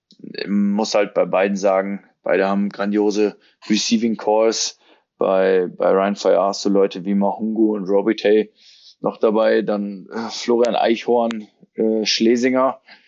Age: 20-39